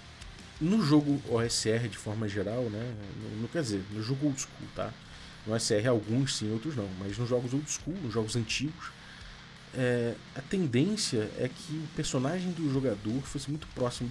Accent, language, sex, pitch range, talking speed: Brazilian, Portuguese, male, 110-140 Hz, 175 wpm